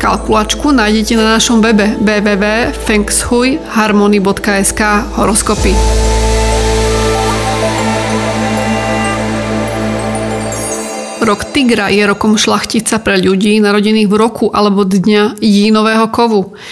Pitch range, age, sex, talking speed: 205-225 Hz, 30-49, female, 75 wpm